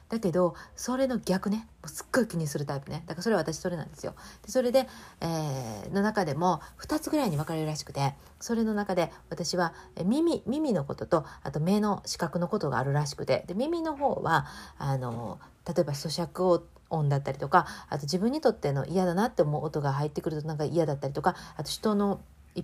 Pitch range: 145-200 Hz